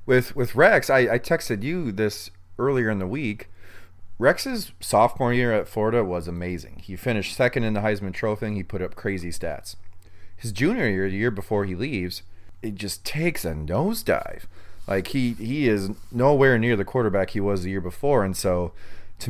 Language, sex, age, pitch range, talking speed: English, male, 30-49, 90-110 Hz, 185 wpm